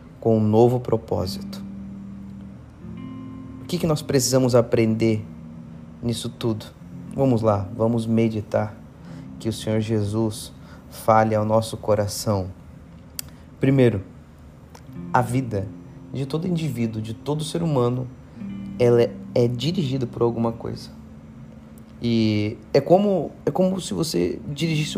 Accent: Brazilian